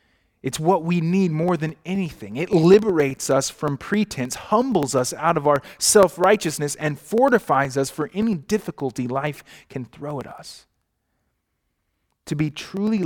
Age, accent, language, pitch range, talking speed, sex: 30-49, American, English, 140-195 Hz, 145 wpm, male